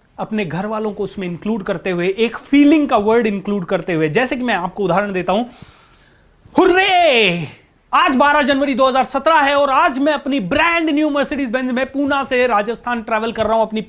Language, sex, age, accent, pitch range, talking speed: Hindi, male, 30-49, native, 205-270 Hz, 195 wpm